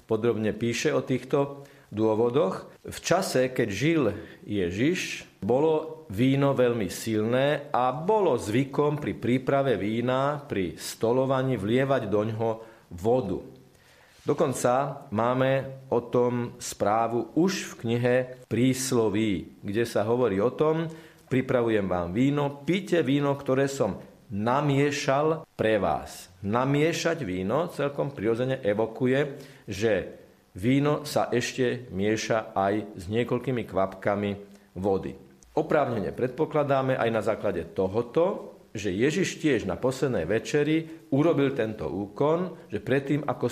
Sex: male